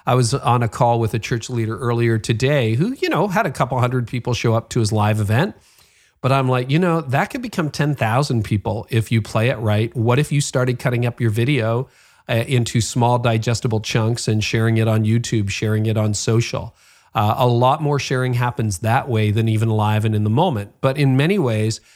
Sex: male